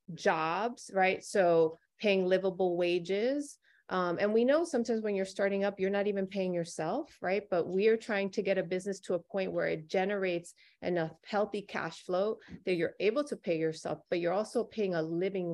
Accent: American